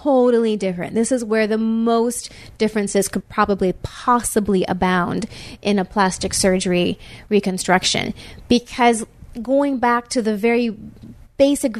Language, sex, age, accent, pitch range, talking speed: English, female, 30-49, American, 200-250 Hz, 120 wpm